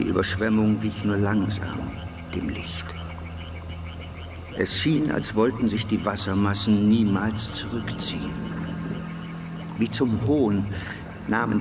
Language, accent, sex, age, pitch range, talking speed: German, German, male, 60-79, 95-110 Hz, 105 wpm